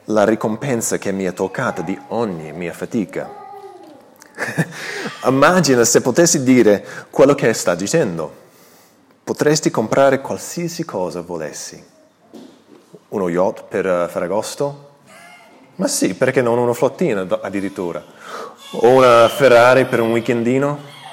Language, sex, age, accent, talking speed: Italian, male, 30-49, native, 120 wpm